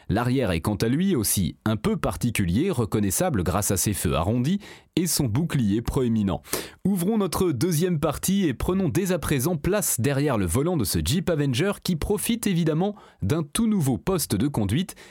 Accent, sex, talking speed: French, male, 180 wpm